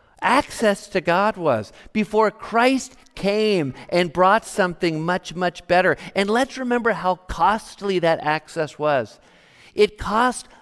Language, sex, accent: English, male, American